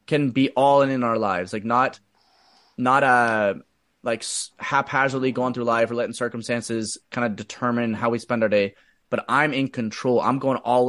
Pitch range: 120-140 Hz